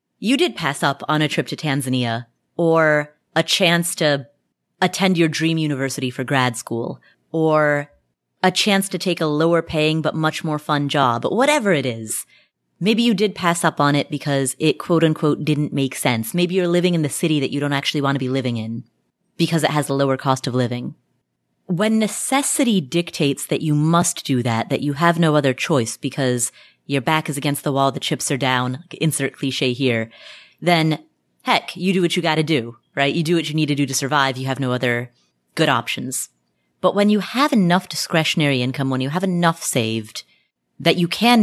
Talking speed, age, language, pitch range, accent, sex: 205 wpm, 30-49, English, 135-175 Hz, American, female